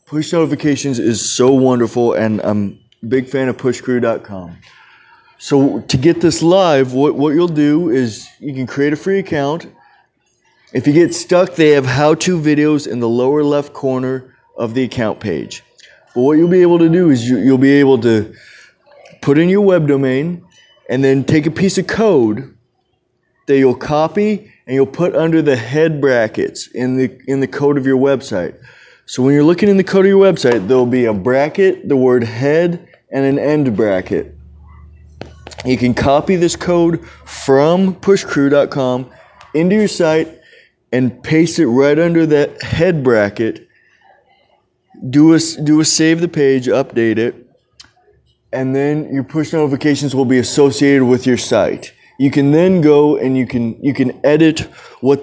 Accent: American